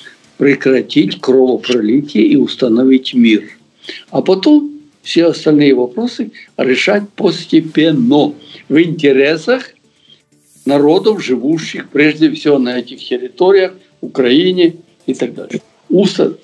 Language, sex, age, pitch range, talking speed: Russian, male, 60-79, 140-230 Hz, 95 wpm